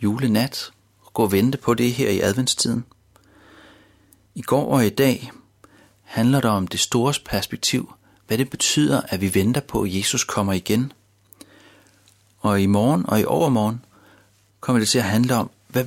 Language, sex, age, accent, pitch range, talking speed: Danish, male, 40-59, native, 100-120 Hz, 170 wpm